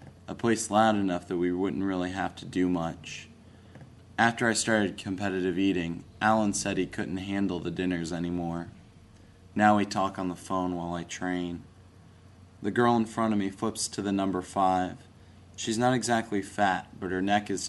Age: 20-39